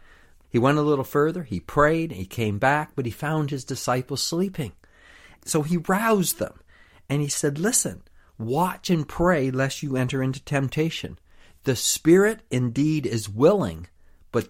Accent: American